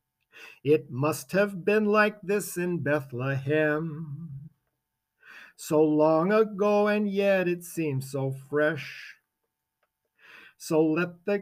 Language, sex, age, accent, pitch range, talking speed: English, male, 50-69, American, 170-230 Hz, 105 wpm